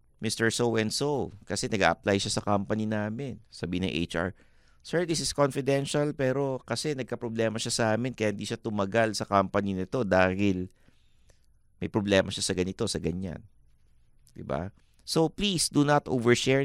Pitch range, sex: 95-125 Hz, male